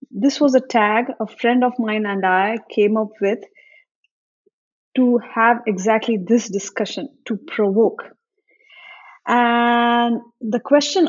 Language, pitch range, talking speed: English, 210-260 Hz, 125 wpm